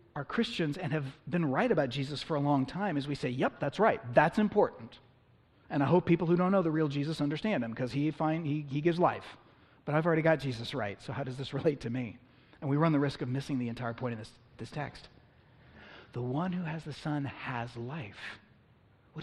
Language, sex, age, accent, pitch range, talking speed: English, male, 30-49, American, 120-155 Hz, 230 wpm